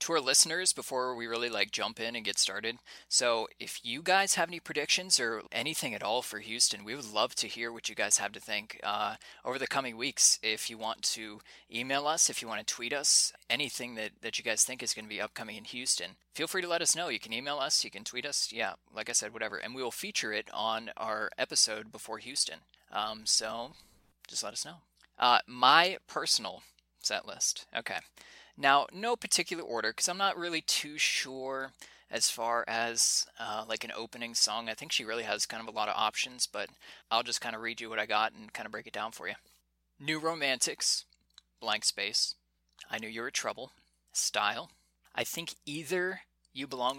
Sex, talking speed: male, 215 wpm